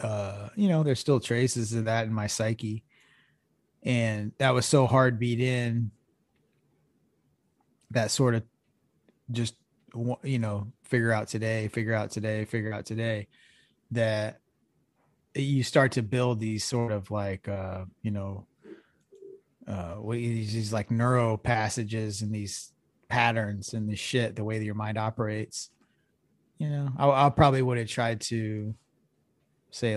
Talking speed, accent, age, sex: 145 wpm, American, 20-39, male